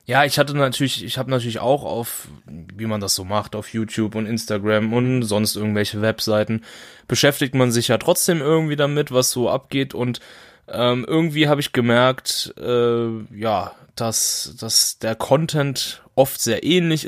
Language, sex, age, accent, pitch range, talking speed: German, male, 10-29, German, 115-150 Hz, 165 wpm